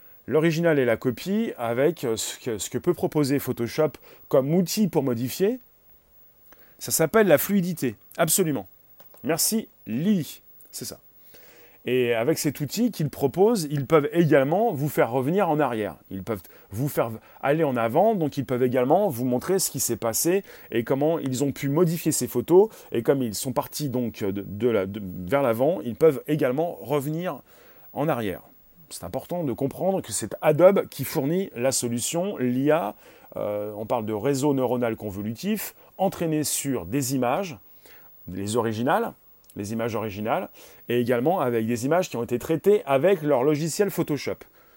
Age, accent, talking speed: 30-49, French, 155 wpm